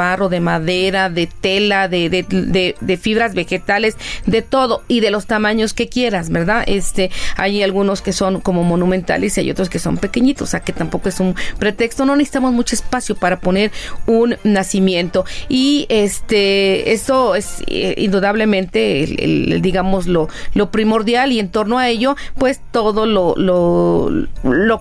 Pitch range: 190-240 Hz